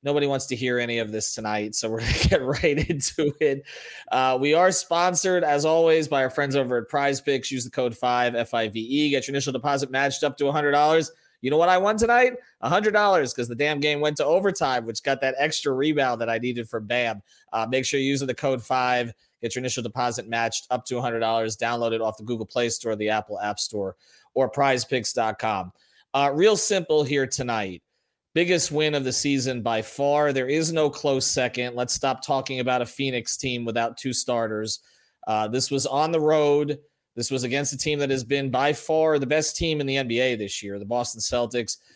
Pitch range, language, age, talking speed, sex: 120-150 Hz, English, 30-49, 210 wpm, male